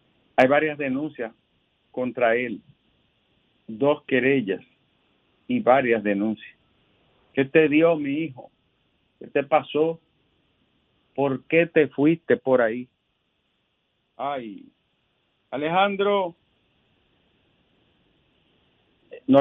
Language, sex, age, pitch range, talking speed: Spanish, male, 50-69, 140-180 Hz, 85 wpm